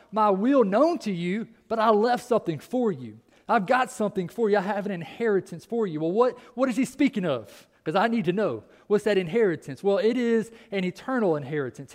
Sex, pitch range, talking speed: male, 180-235 Hz, 215 wpm